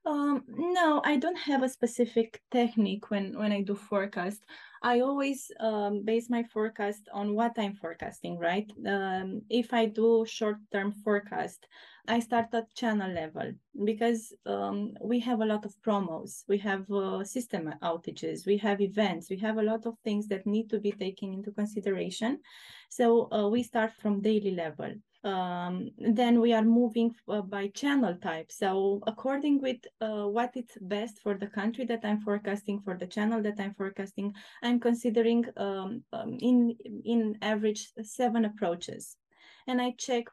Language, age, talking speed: English, 20-39, 165 wpm